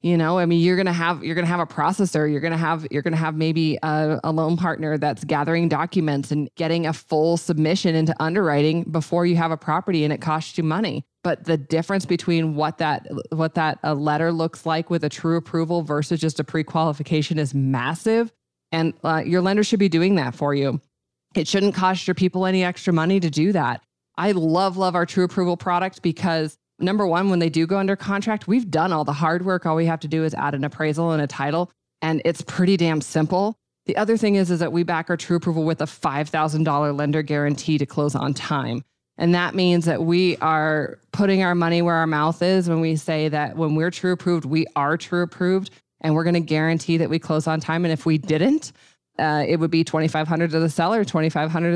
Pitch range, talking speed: 155-175 Hz, 225 wpm